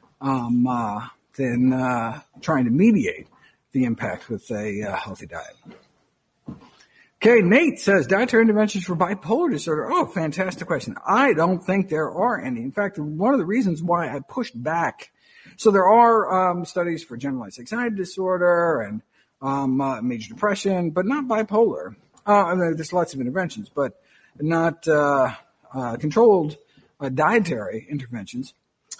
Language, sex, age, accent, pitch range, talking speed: English, male, 50-69, American, 145-205 Hz, 145 wpm